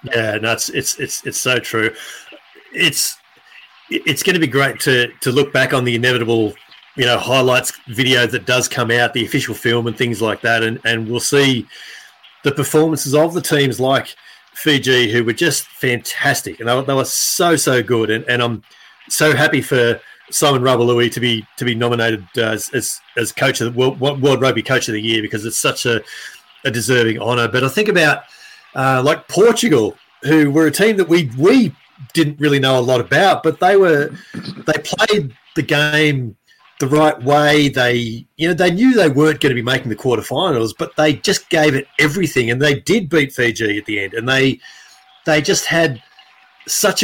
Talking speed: 200 wpm